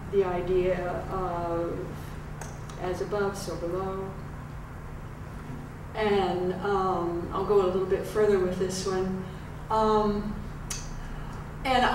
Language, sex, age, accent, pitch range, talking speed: English, female, 50-69, American, 185-215 Hz, 100 wpm